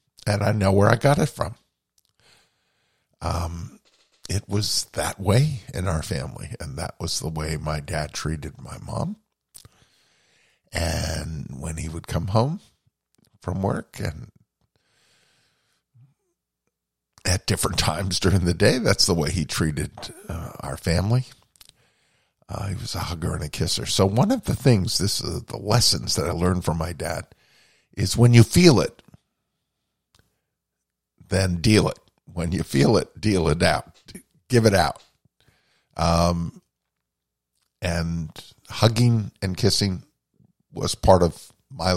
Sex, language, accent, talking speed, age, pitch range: male, English, American, 140 wpm, 50-69, 85-110 Hz